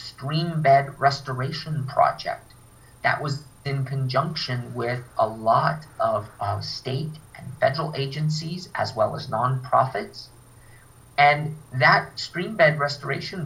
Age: 30-49